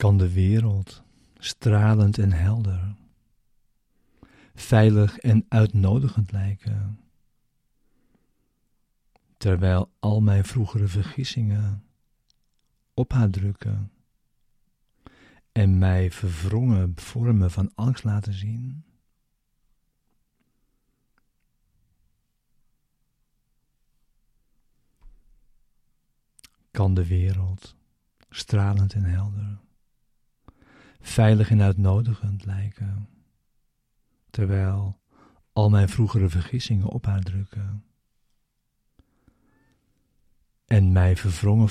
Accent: Dutch